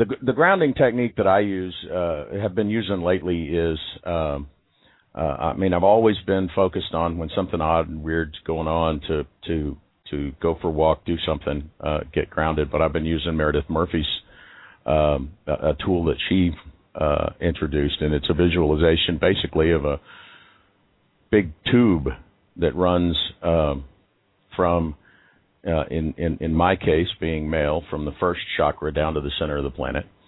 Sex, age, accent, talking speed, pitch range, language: male, 50-69, American, 175 wpm, 75-90 Hz, English